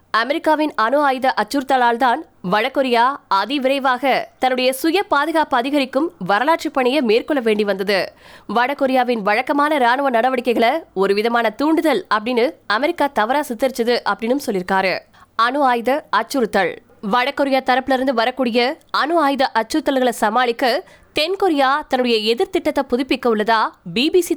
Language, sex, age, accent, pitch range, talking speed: Tamil, female, 20-39, native, 230-290 Hz, 100 wpm